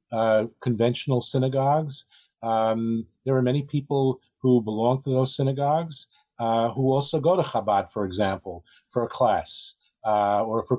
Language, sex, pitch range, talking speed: English, male, 110-130 Hz, 155 wpm